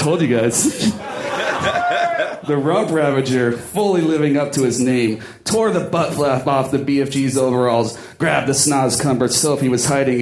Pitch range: 135-180 Hz